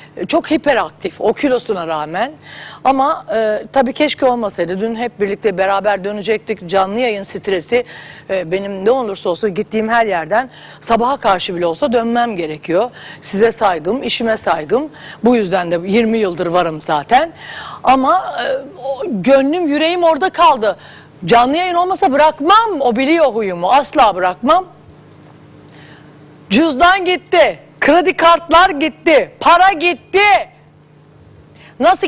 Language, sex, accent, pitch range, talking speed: Turkish, female, native, 210-345 Hz, 125 wpm